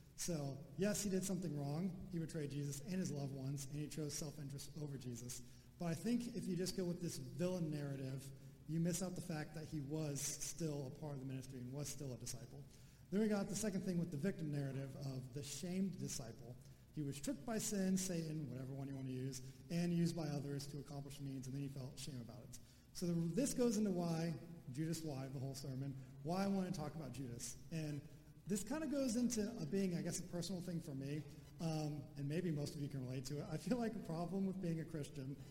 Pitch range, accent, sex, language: 140-180 Hz, American, male, English